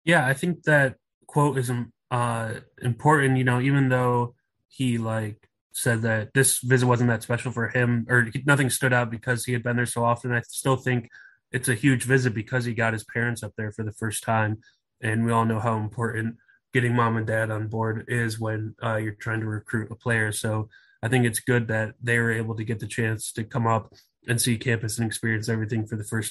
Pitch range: 110-125 Hz